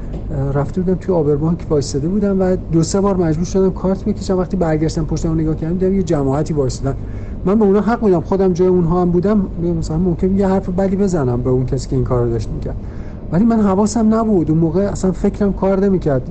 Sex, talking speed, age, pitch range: male, 215 wpm, 50-69, 135-185 Hz